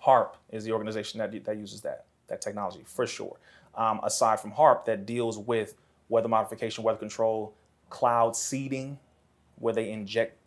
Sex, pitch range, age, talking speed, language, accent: male, 110-120 Hz, 30-49, 160 wpm, English, American